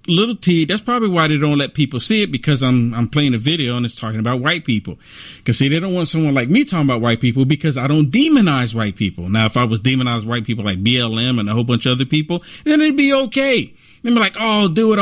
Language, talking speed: English, 270 wpm